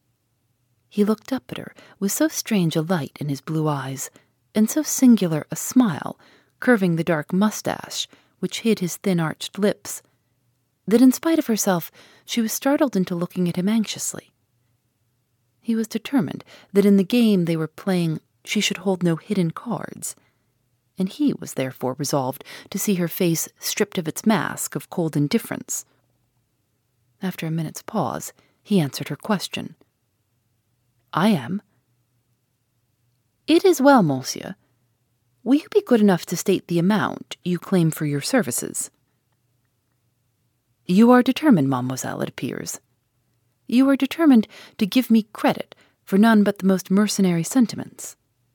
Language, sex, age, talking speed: English, female, 40-59, 150 wpm